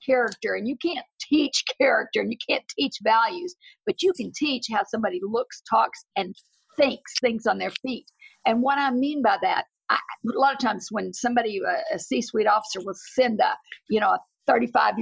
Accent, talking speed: American, 190 wpm